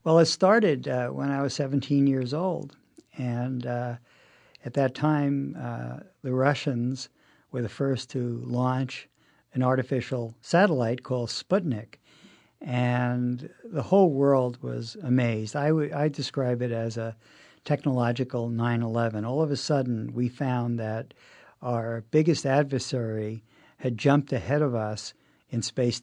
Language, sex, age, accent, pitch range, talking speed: English, male, 50-69, American, 120-140 Hz, 135 wpm